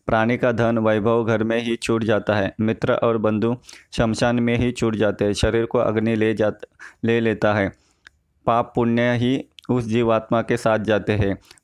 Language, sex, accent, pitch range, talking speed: Hindi, male, native, 105-120 Hz, 185 wpm